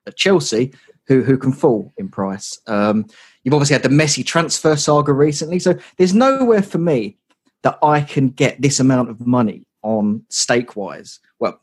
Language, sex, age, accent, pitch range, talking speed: English, male, 30-49, British, 110-145 Hz, 165 wpm